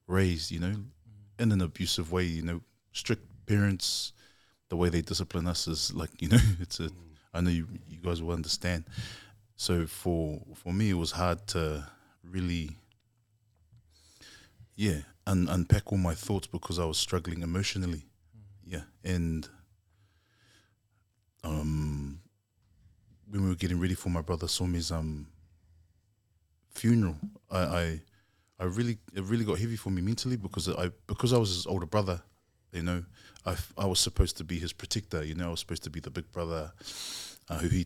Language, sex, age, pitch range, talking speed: English, male, 20-39, 85-100 Hz, 170 wpm